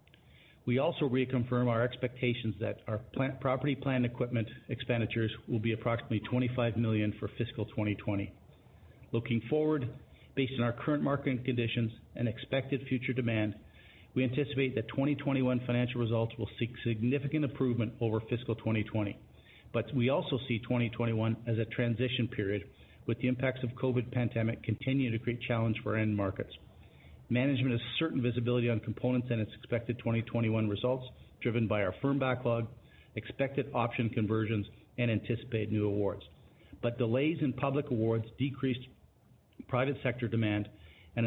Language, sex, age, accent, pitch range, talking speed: English, male, 50-69, American, 110-130 Hz, 145 wpm